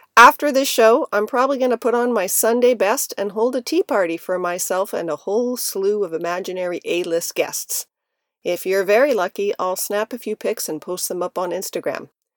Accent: American